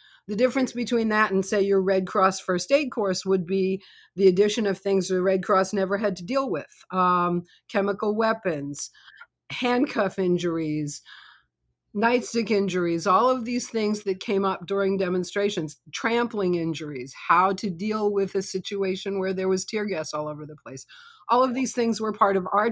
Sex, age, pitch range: female, 50-69, 185-215 Hz